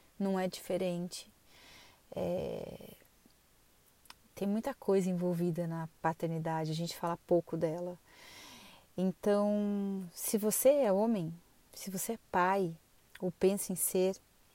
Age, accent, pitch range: 30-49, Brazilian, 175-210 Hz